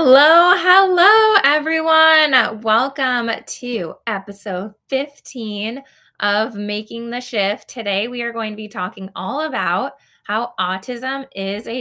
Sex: female